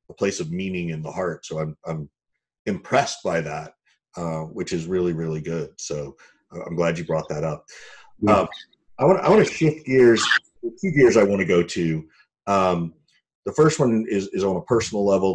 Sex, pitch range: male, 80-100 Hz